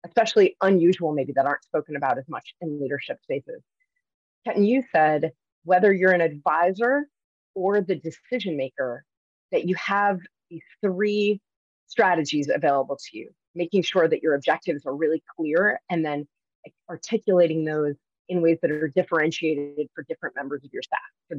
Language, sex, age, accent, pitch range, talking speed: English, female, 30-49, American, 150-190 Hz, 155 wpm